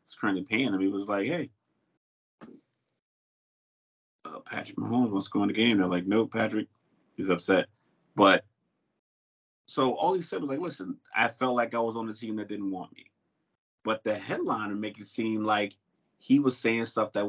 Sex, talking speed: male, 185 wpm